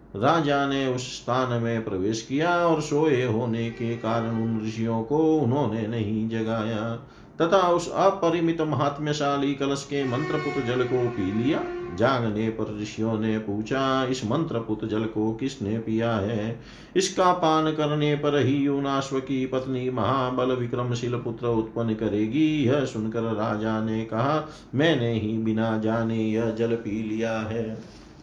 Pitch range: 110-140 Hz